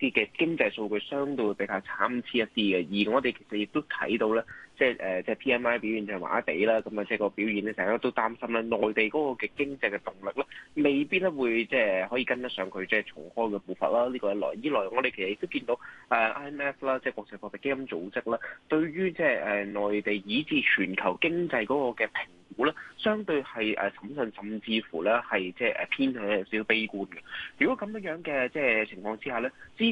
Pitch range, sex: 105-150 Hz, male